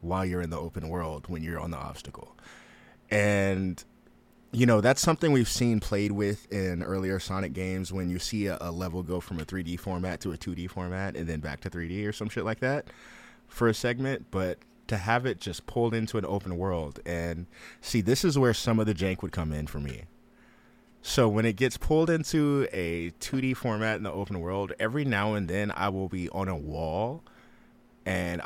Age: 20-39